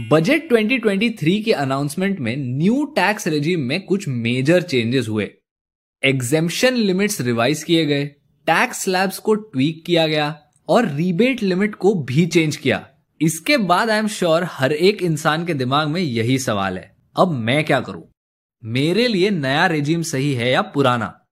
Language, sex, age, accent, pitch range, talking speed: Hindi, male, 20-39, native, 135-200 Hz, 150 wpm